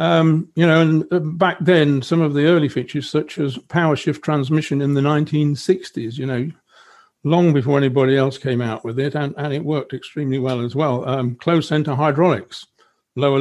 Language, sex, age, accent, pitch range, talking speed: English, male, 50-69, British, 140-165 Hz, 190 wpm